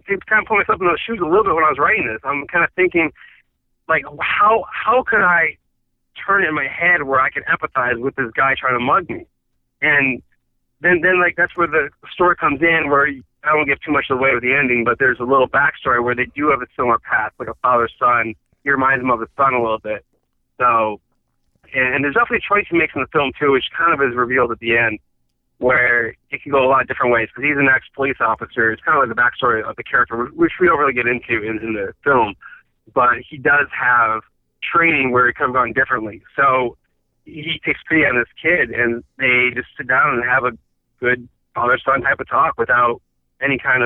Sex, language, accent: male, English, American